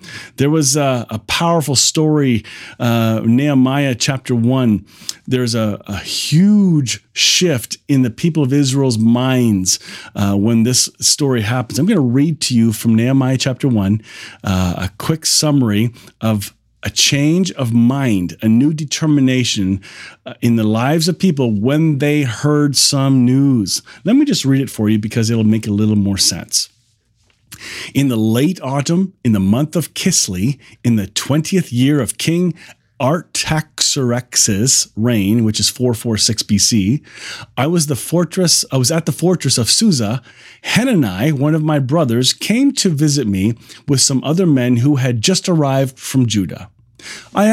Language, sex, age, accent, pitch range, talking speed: English, male, 40-59, American, 110-150 Hz, 155 wpm